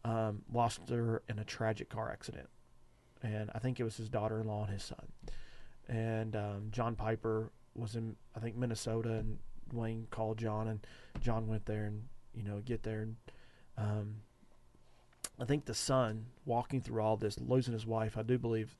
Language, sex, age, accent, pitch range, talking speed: English, male, 30-49, American, 110-125 Hz, 180 wpm